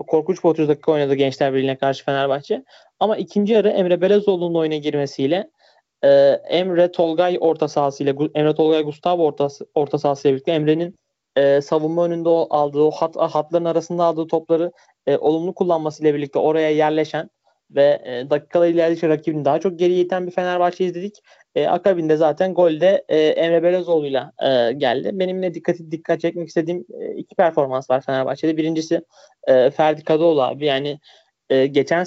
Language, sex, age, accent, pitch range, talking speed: Turkish, male, 30-49, native, 150-175 Hz, 155 wpm